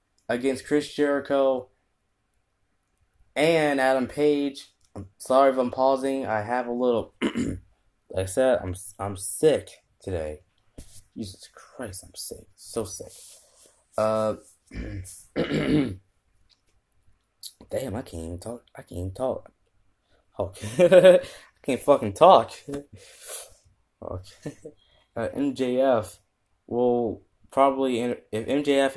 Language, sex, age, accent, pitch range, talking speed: English, male, 10-29, American, 95-120 Hz, 110 wpm